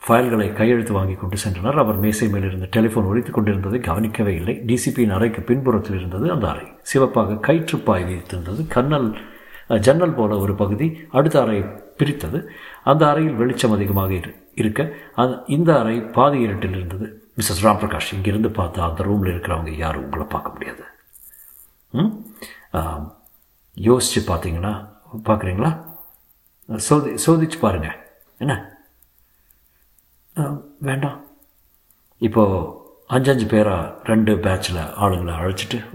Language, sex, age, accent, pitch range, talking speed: Tamil, male, 60-79, native, 90-115 Hz, 120 wpm